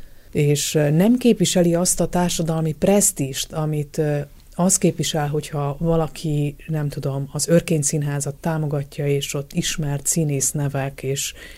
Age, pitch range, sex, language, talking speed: 30-49, 145-170 Hz, female, Hungarian, 115 wpm